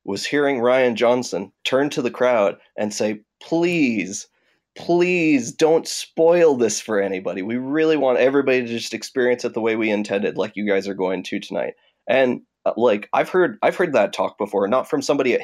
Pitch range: 100-140 Hz